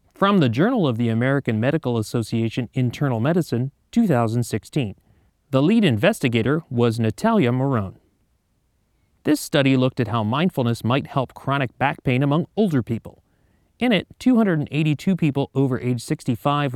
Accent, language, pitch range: American, English, 120-160 Hz